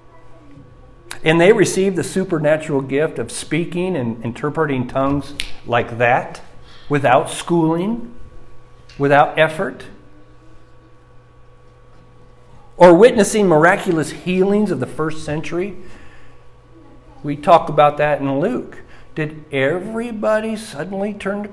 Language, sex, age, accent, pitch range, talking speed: English, male, 50-69, American, 125-185 Hz, 100 wpm